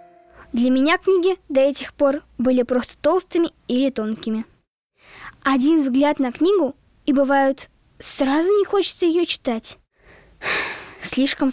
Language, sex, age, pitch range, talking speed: Russian, female, 10-29, 240-315 Hz, 120 wpm